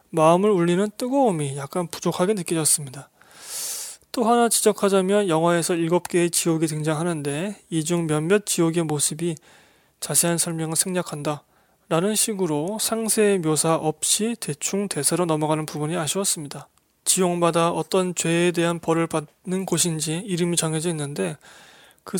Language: Korean